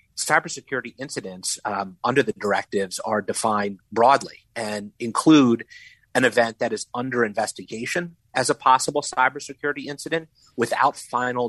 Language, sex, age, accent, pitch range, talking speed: English, male, 30-49, American, 110-130 Hz, 125 wpm